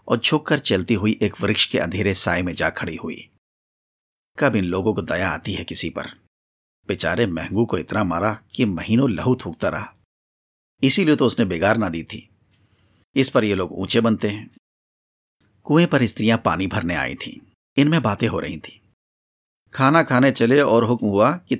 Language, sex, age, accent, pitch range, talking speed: Hindi, male, 50-69, native, 85-125 Hz, 180 wpm